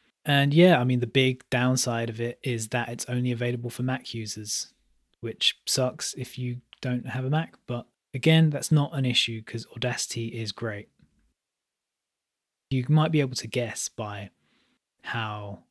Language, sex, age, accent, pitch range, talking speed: English, male, 20-39, British, 115-135 Hz, 165 wpm